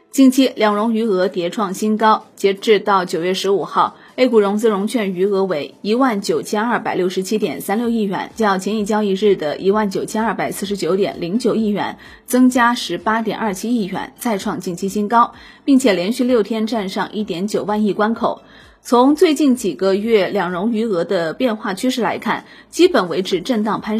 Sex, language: female, Chinese